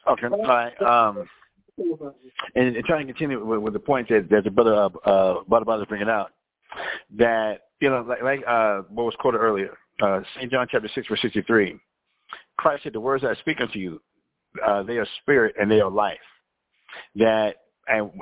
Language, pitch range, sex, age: English, 105-125 Hz, male, 50-69